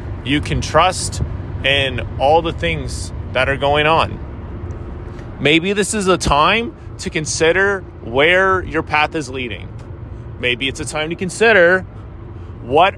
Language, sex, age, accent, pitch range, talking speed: English, male, 30-49, American, 100-140 Hz, 140 wpm